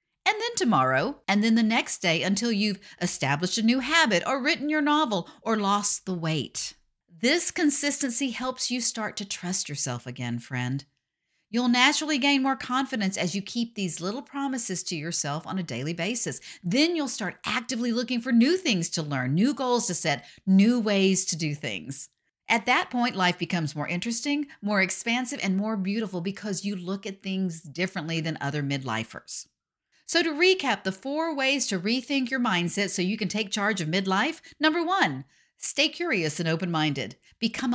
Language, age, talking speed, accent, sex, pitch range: English, 50-69, 180 wpm, American, female, 175-255 Hz